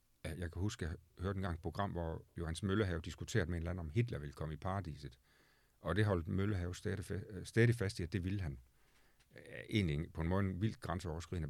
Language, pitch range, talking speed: Danish, 80-105 Hz, 225 wpm